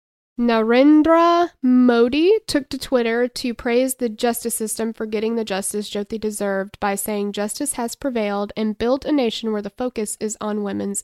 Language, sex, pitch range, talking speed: English, female, 215-260 Hz, 170 wpm